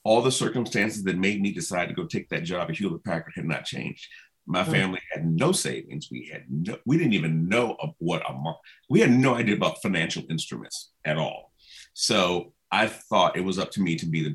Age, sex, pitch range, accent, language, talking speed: 40-59, male, 90-120 Hz, American, English, 225 wpm